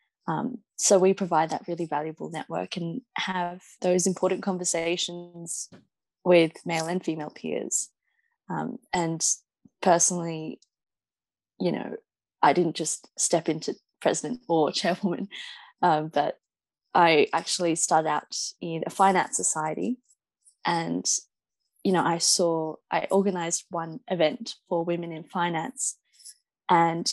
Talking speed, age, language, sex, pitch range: 120 wpm, 20-39, English, female, 170-205 Hz